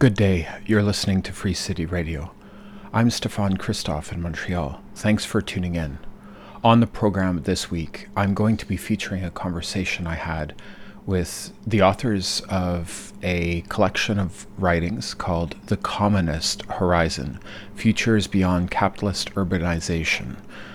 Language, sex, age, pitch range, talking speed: English, male, 40-59, 85-100 Hz, 135 wpm